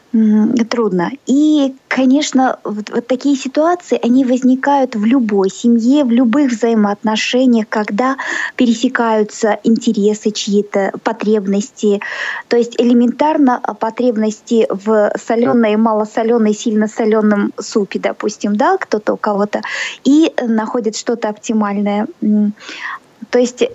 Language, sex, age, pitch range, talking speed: Russian, female, 20-39, 205-255 Hz, 105 wpm